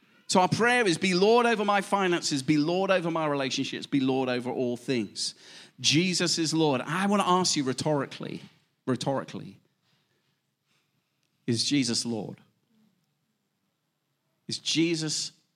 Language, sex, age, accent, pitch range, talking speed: English, male, 40-59, British, 140-190 Hz, 130 wpm